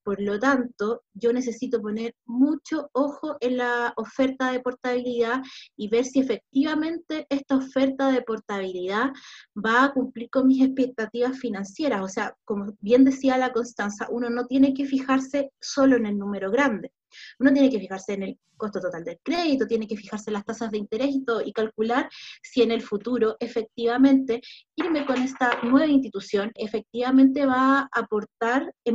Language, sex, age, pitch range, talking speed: Spanish, female, 20-39, 215-260 Hz, 170 wpm